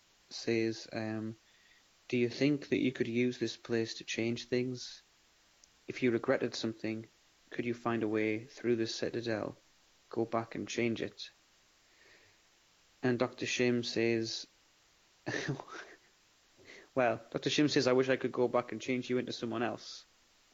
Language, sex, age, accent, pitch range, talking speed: English, male, 30-49, British, 115-125 Hz, 150 wpm